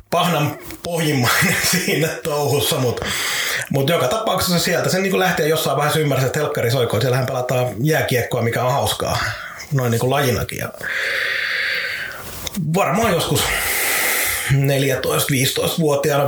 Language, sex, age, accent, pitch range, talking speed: Finnish, male, 30-49, native, 120-150 Hz, 120 wpm